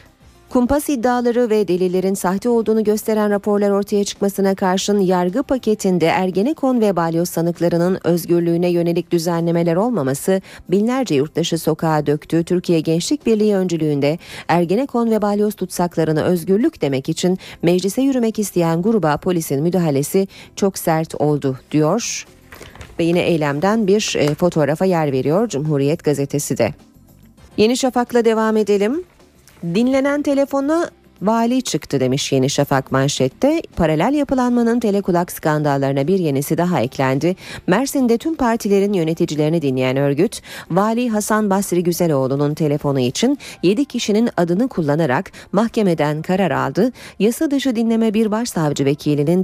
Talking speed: 120 wpm